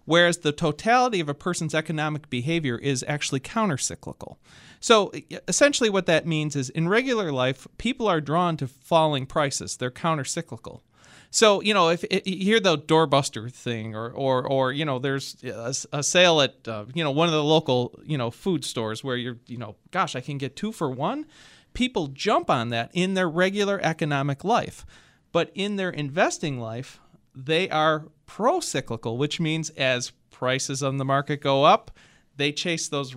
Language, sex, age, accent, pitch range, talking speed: English, male, 40-59, American, 130-175 Hz, 180 wpm